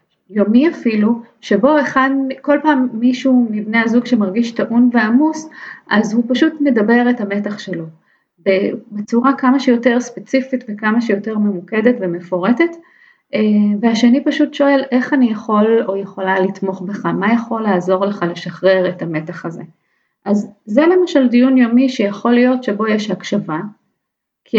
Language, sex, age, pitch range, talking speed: English, female, 30-49, 190-250 Hz, 135 wpm